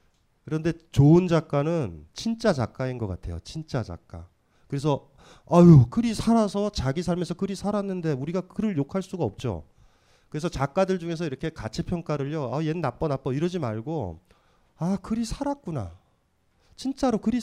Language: Korean